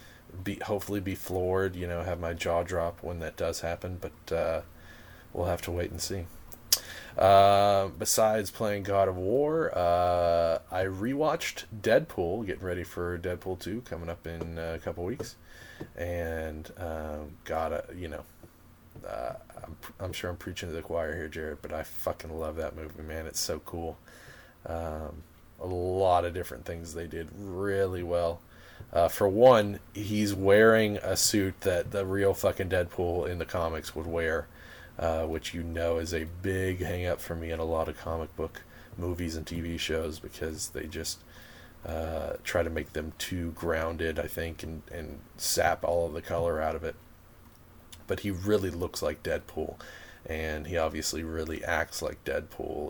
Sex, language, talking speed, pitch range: male, English, 170 wpm, 80-95 Hz